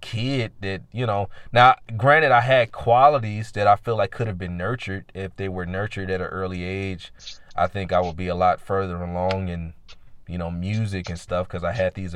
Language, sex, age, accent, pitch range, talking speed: English, male, 30-49, American, 85-105 Hz, 215 wpm